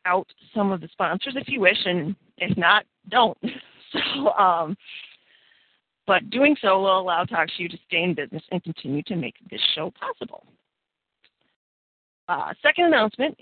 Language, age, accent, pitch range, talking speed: English, 40-59, American, 185-230 Hz, 150 wpm